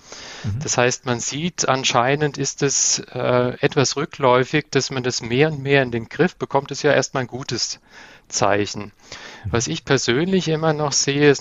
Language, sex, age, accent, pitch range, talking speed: German, male, 40-59, German, 115-140 Hz, 180 wpm